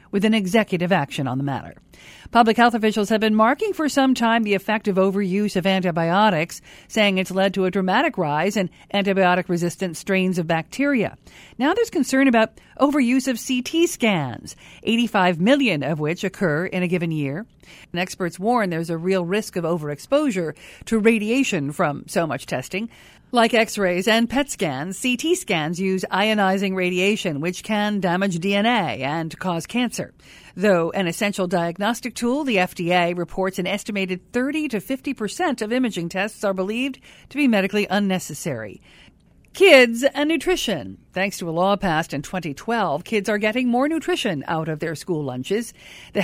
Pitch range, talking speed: 180-235 Hz, 165 wpm